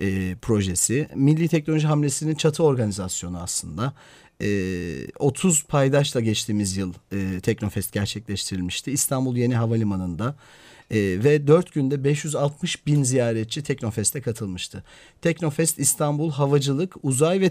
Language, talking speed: Turkish, 115 wpm